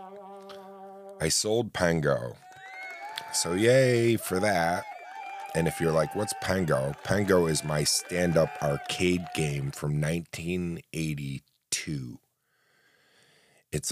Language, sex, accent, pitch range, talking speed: English, male, American, 70-85 Hz, 95 wpm